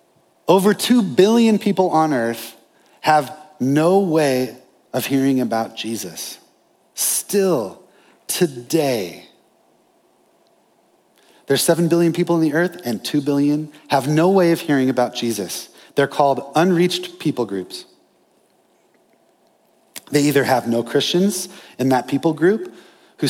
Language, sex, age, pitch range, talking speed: English, male, 30-49, 125-170 Hz, 120 wpm